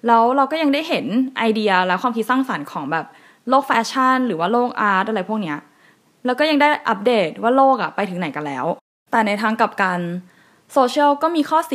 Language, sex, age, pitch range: Thai, female, 20-39, 190-255 Hz